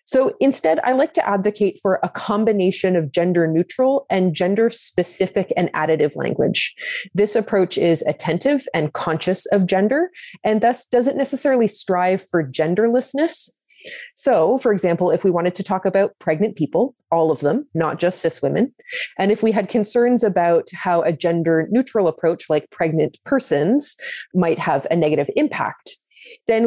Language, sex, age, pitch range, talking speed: English, female, 30-49, 165-225 Hz, 160 wpm